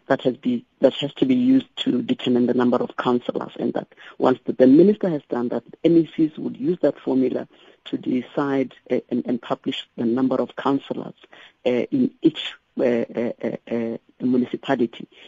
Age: 50-69